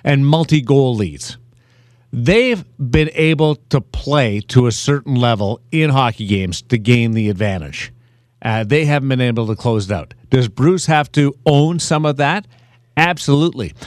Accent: American